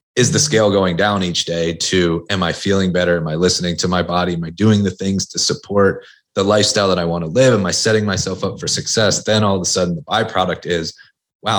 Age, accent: 30-49, American